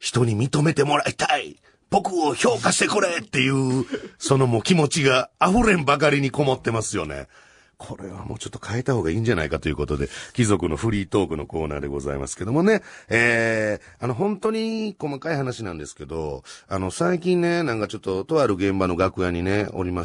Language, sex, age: Japanese, male, 40-59